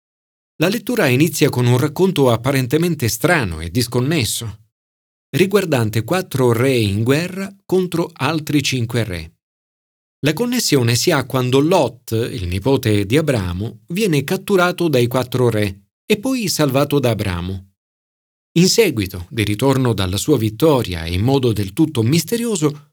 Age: 40-59